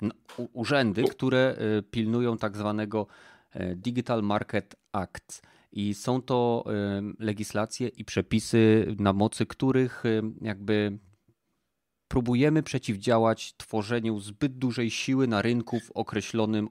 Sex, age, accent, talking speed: male, 30-49, native, 100 wpm